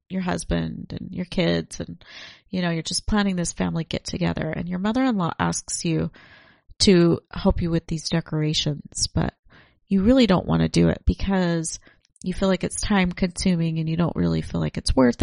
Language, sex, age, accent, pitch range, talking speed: English, female, 30-49, American, 150-195 Hz, 195 wpm